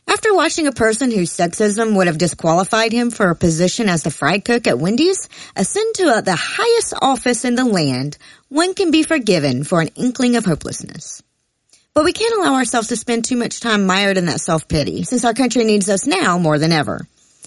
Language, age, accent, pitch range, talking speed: English, 40-59, American, 175-250 Hz, 205 wpm